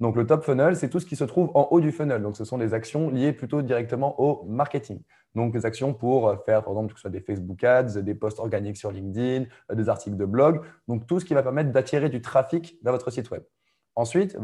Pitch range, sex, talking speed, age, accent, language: 110-150 Hz, male, 255 wpm, 20-39, French, French